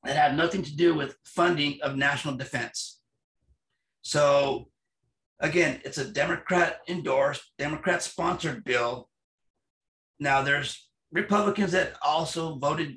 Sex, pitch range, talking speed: male, 140-170 Hz, 105 wpm